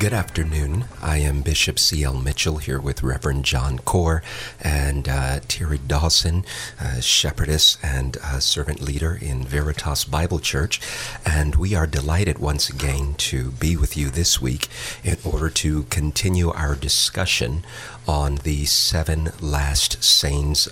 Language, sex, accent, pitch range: English, male, American, 70-85 Hz